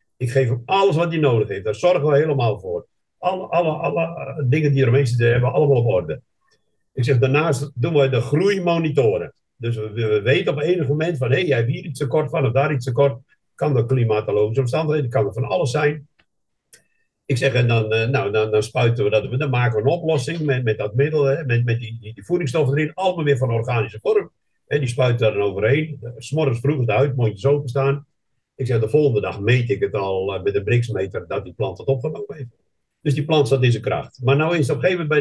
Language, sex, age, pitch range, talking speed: Dutch, male, 60-79, 120-150 Hz, 240 wpm